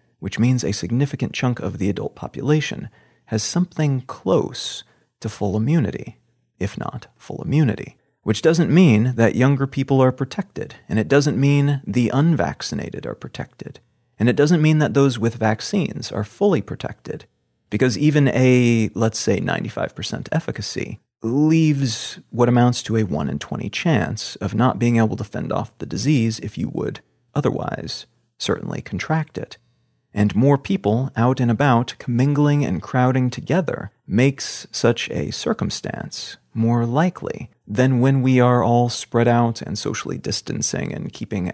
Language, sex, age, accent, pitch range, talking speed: English, male, 30-49, American, 115-145 Hz, 155 wpm